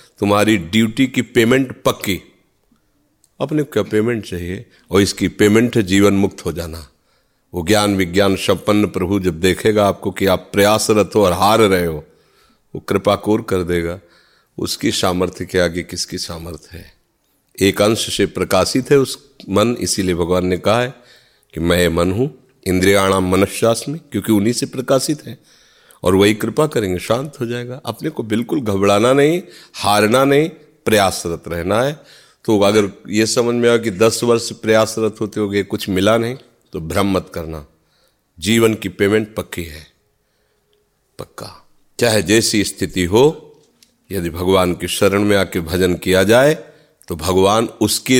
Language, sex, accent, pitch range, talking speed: Hindi, male, native, 95-115 Hz, 155 wpm